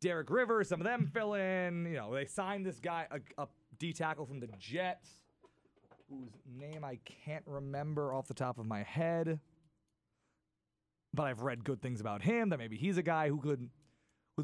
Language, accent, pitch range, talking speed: English, American, 120-165 Hz, 185 wpm